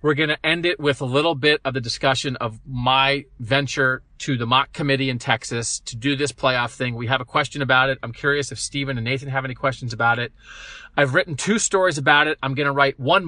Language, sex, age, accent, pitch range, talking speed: English, male, 40-59, American, 125-145 Hz, 245 wpm